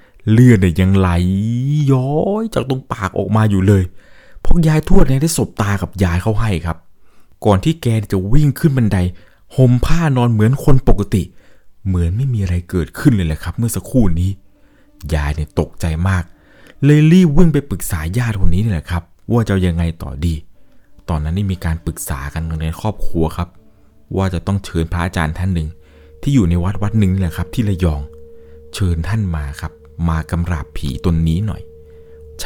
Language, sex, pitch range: Thai, male, 75-100 Hz